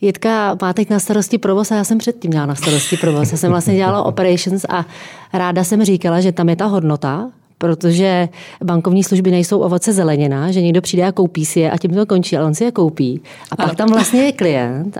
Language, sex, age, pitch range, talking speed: Czech, female, 30-49, 170-195 Hz, 225 wpm